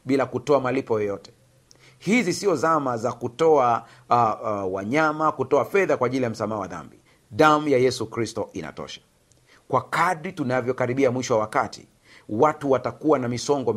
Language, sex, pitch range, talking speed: Swahili, male, 120-155 Hz, 150 wpm